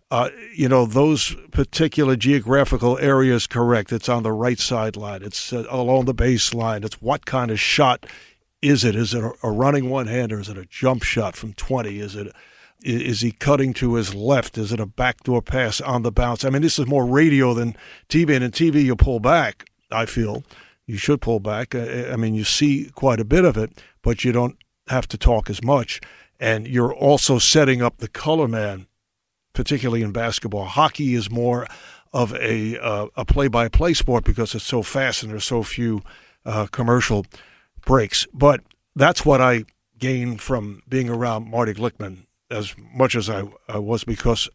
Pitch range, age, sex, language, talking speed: 110-130 Hz, 60-79, male, English, 190 wpm